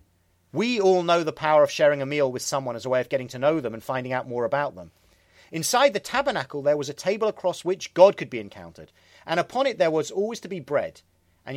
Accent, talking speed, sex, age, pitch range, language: British, 250 wpm, male, 40-59, 130-190 Hz, English